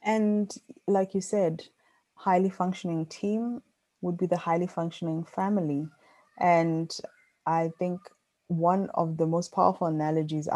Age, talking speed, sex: 20-39, 125 wpm, female